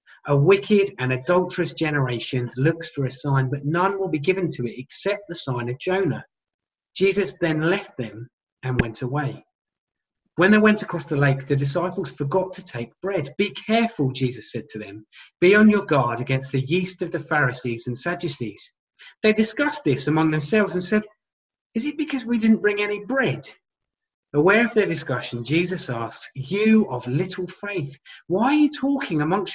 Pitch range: 135-200 Hz